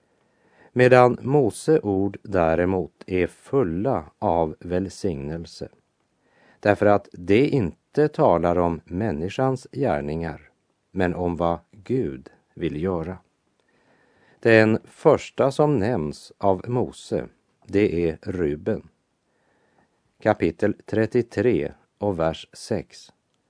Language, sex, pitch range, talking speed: French, male, 85-110 Hz, 90 wpm